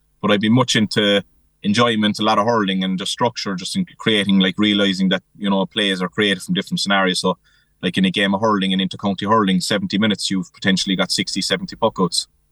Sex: male